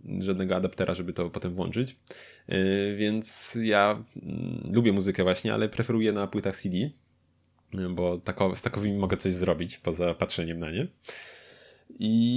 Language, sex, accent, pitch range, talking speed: Polish, male, native, 95-120 Hz, 130 wpm